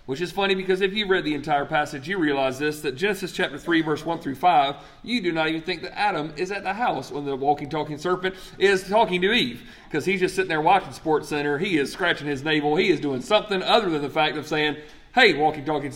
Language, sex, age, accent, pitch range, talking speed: English, male, 40-59, American, 140-185 Hz, 250 wpm